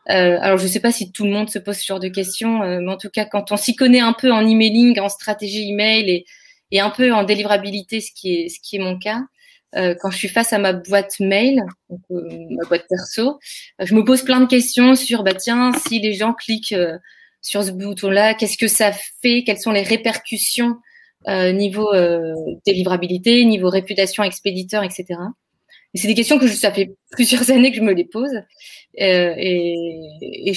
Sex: female